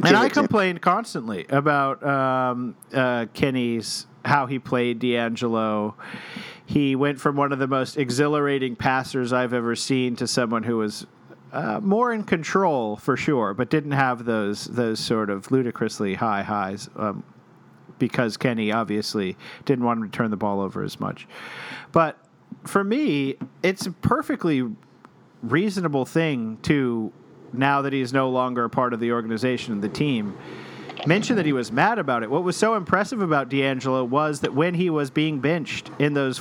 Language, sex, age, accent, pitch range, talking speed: English, male, 40-59, American, 125-155 Hz, 170 wpm